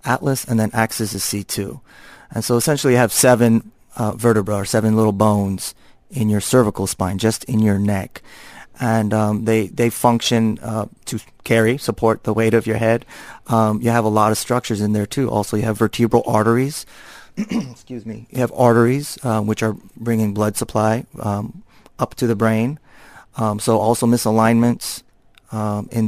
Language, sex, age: English, male, 30-49